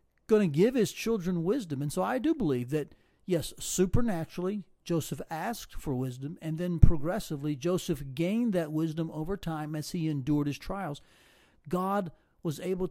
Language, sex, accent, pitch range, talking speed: English, male, American, 140-180 Hz, 165 wpm